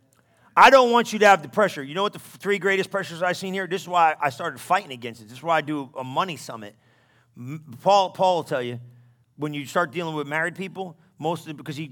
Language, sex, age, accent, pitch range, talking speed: English, male, 40-59, American, 130-185 Hz, 235 wpm